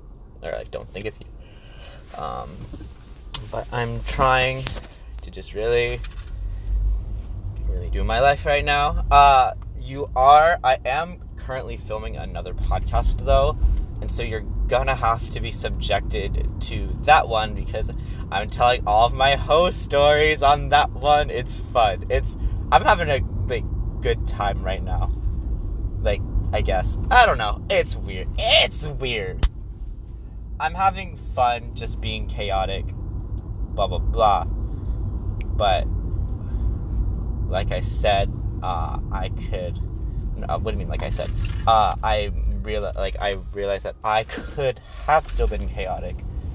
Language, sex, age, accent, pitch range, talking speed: English, male, 20-39, American, 95-115 Hz, 140 wpm